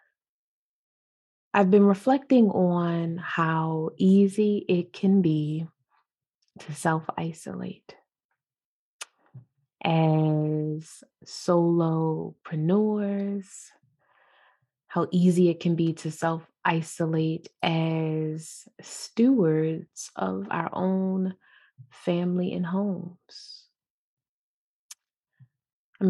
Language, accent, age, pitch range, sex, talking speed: English, American, 20-39, 160-190 Hz, female, 65 wpm